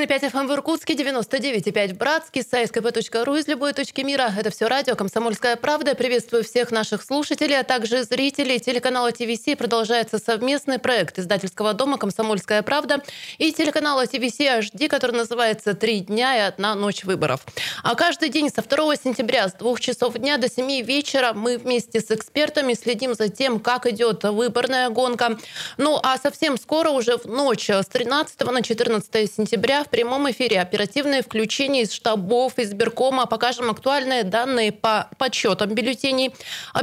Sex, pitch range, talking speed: female, 225-275 Hz, 160 wpm